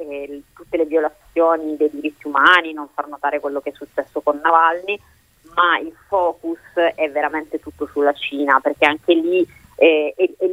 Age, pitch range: 30-49, 150-180 Hz